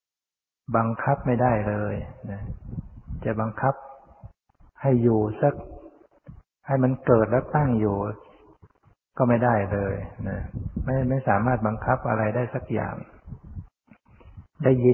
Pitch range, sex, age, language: 110-130 Hz, male, 60-79, Thai